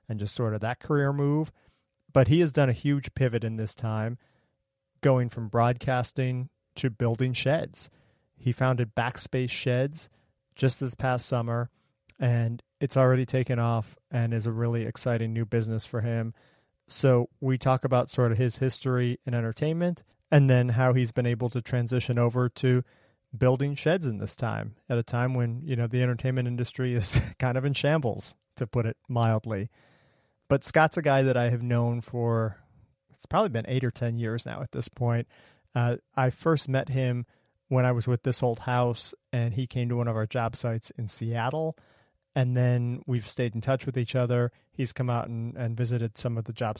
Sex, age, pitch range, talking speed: male, 30-49, 115-130 Hz, 190 wpm